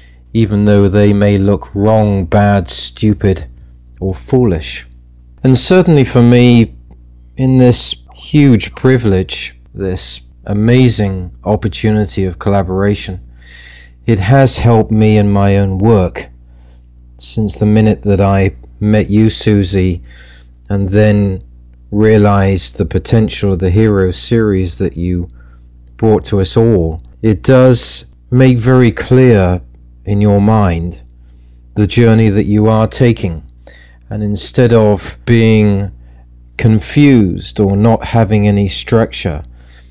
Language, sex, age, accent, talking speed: Italian, male, 40-59, British, 115 wpm